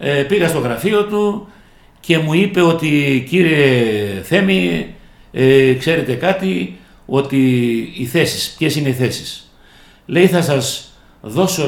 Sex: male